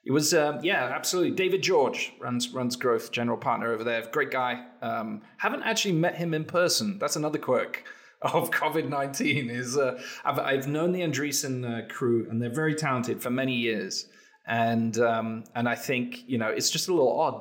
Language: English